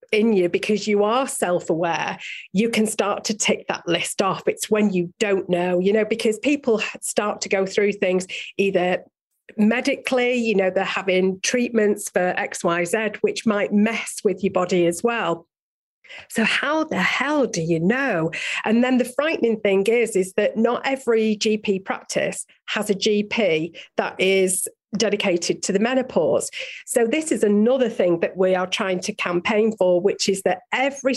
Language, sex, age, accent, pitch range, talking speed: English, female, 40-59, British, 185-235 Hz, 175 wpm